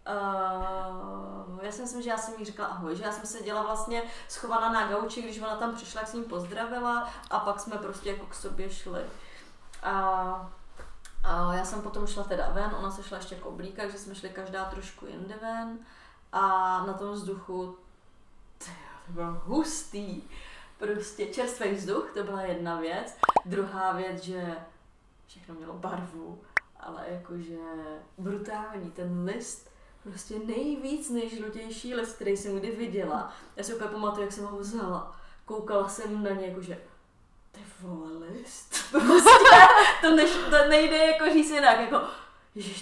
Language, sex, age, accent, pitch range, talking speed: Czech, female, 20-39, native, 190-230 Hz, 165 wpm